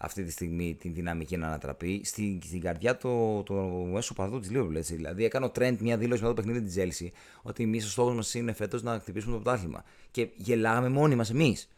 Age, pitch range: 30-49, 95-130 Hz